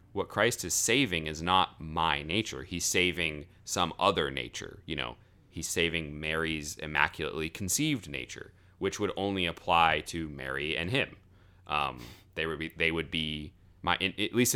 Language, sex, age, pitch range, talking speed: English, male, 30-49, 75-95 Hz, 165 wpm